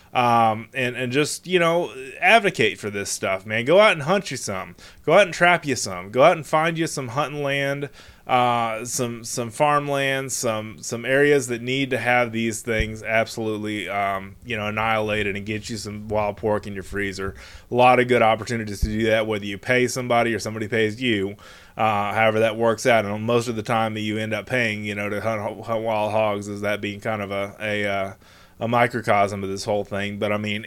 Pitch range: 105-130 Hz